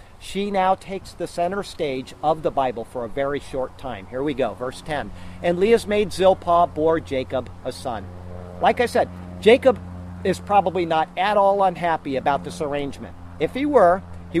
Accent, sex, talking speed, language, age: American, male, 185 wpm, English, 50-69